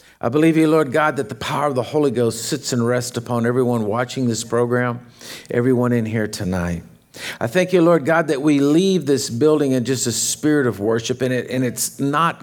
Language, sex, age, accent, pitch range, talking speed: English, male, 50-69, American, 115-150 Hz, 215 wpm